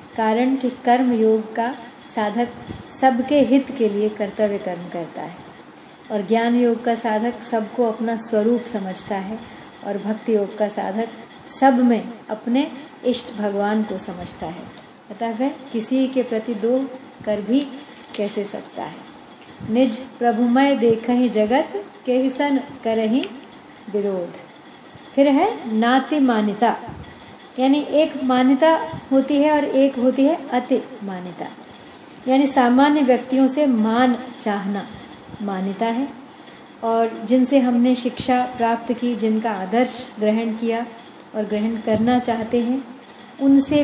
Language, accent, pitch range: Hindi, native, 220-265 Hz